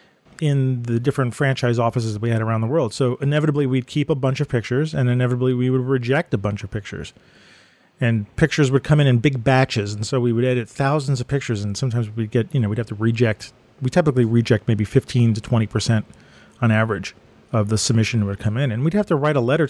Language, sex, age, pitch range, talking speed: English, male, 40-59, 115-145 Hz, 230 wpm